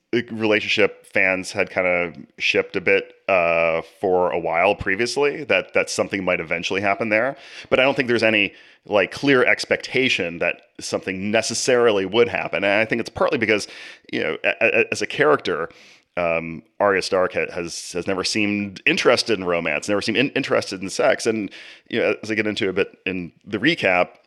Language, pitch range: English, 90-110 Hz